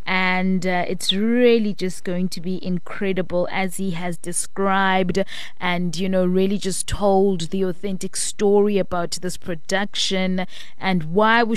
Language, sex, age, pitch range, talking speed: English, female, 20-39, 180-200 Hz, 150 wpm